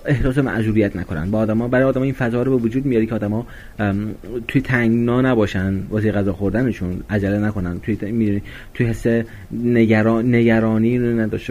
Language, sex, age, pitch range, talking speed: Persian, male, 30-49, 100-115 Hz, 155 wpm